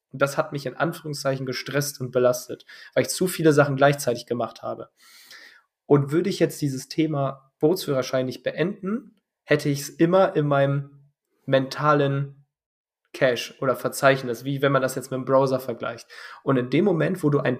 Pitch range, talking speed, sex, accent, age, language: 130-150 Hz, 175 wpm, male, German, 20-39, German